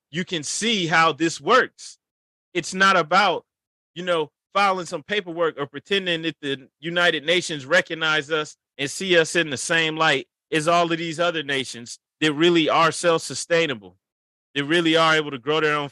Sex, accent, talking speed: male, American, 185 wpm